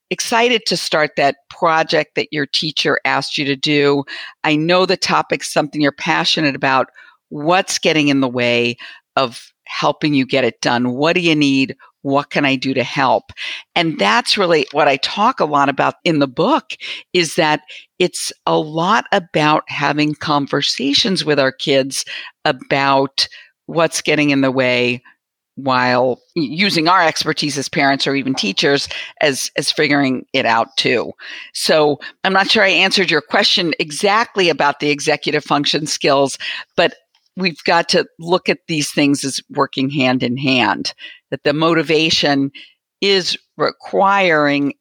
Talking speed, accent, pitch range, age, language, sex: 155 wpm, American, 135-170 Hz, 50-69, English, female